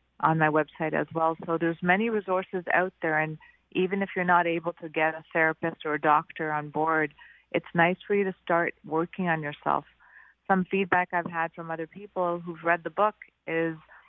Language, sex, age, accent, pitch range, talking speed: English, female, 30-49, American, 160-185 Hz, 200 wpm